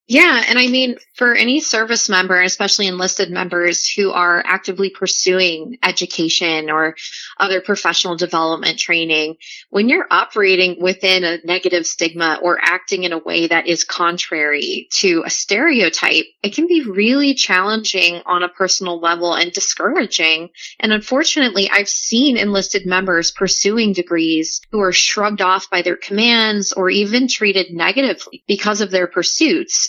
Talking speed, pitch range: 145 wpm, 180-215 Hz